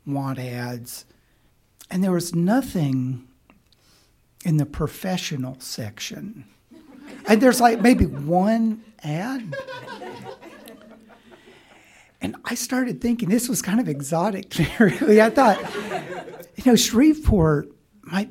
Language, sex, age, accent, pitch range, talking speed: English, male, 60-79, American, 165-245 Hz, 105 wpm